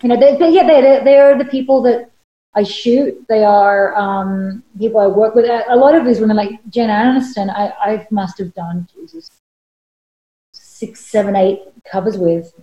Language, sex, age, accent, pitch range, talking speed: English, female, 30-49, Australian, 190-225 Hz, 185 wpm